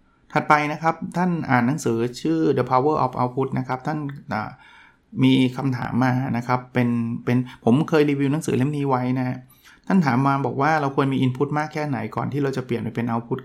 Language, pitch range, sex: Thai, 120-145 Hz, male